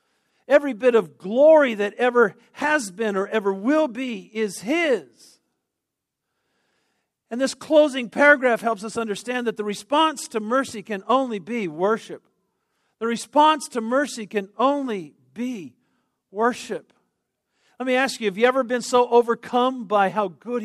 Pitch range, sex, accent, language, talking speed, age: 200-255 Hz, male, American, English, 150 wpm, 50-69